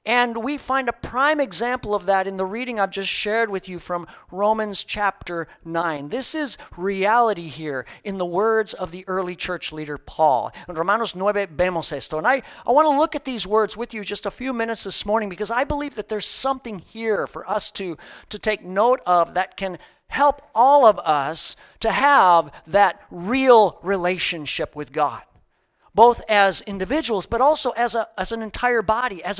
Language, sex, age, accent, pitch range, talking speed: English, male, 50-69, American, 190-245 Hz, 185 wpm